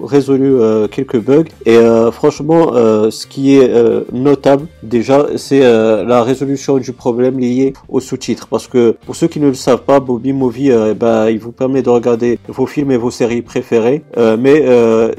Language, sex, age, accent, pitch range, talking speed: French, male, 40-59, French, 115-135 Hz, 200 wpm